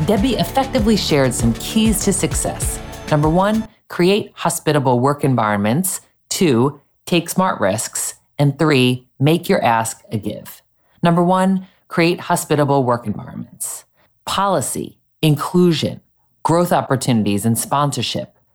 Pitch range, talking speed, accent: 125-175 Hz, 115 wpm, American